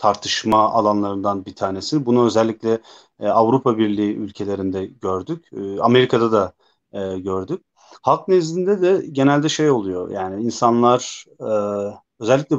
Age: 30-49